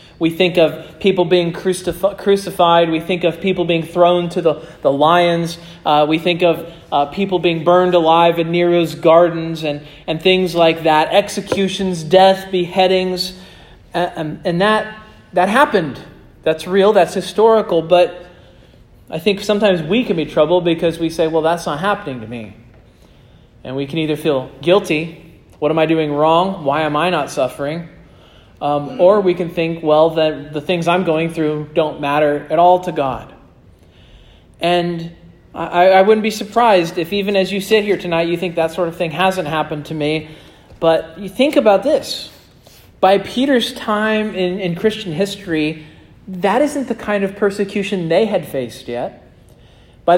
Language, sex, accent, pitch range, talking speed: English, male, American, 160-190 Hz, 170 wpm